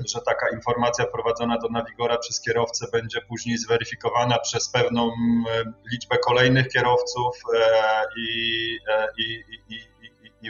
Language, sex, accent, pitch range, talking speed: Polish, male, native, 115-135 Hz, 120 wpm